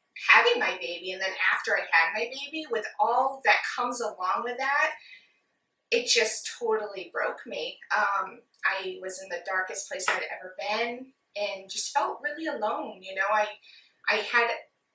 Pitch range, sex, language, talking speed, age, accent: 205-290 Hz, female, English, 175 wpm, 20-39, American